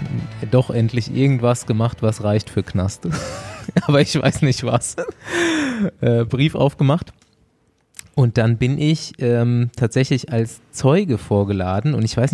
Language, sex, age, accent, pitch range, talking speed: German, male, 20-39, German, 115-150 Hz, 130 wpm